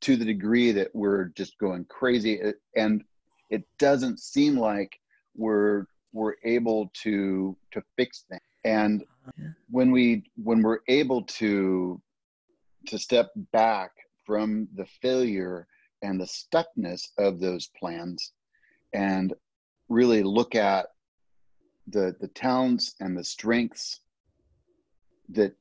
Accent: American